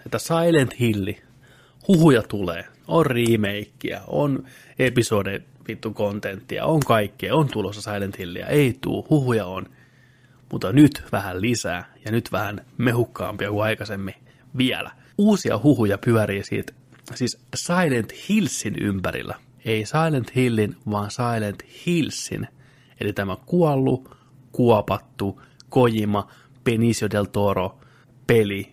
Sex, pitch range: male, 105-130 Hz